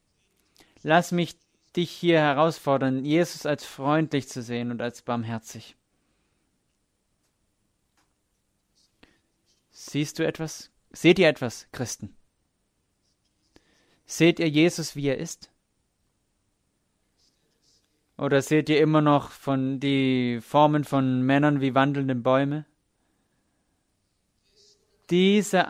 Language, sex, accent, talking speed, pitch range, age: English, male, German, 90 wpm, 145-185 Hz, 30-49